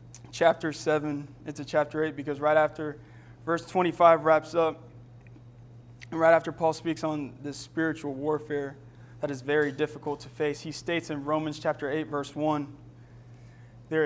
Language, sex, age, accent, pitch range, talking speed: English, male, 20-39, American, 130-155 Hz, 155 wpm